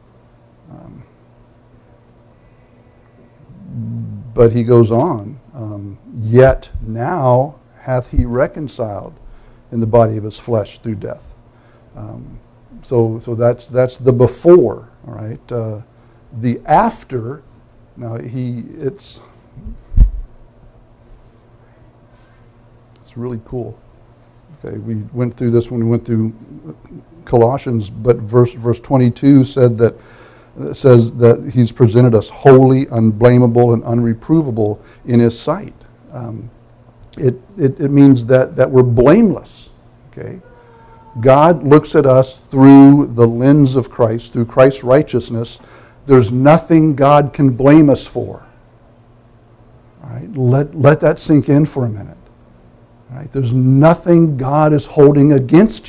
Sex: male